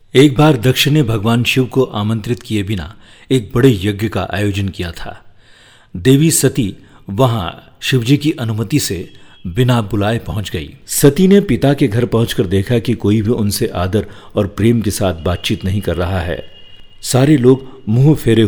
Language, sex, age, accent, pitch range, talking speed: Hindi, male, 50-69, native, 105-135 Hz, 150 wpm